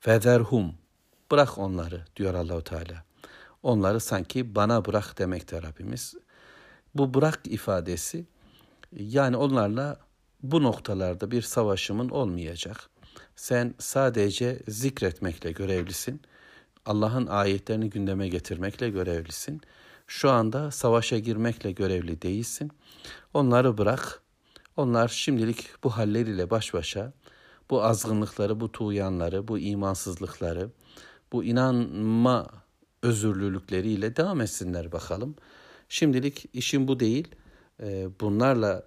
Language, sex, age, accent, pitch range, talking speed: Turkish, male, 60-79, native, 95-120 Hz, 95 wpm